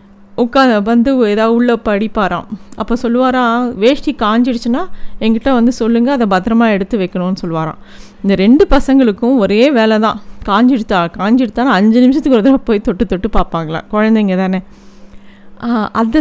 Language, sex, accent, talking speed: Tamil, female, native, 135 wpm